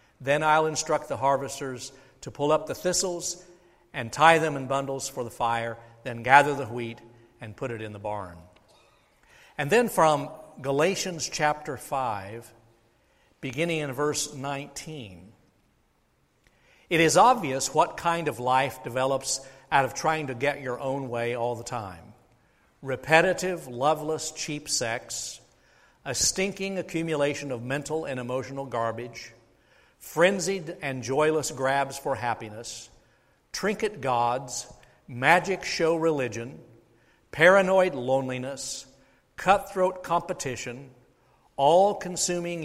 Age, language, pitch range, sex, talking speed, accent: 60-79, English, 120-160 Hz, male, 120 wpm, American